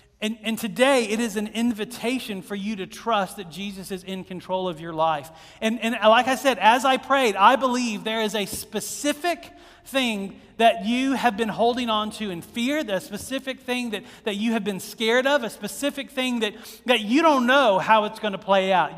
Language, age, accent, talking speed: English, 40-59, American, 210 wpm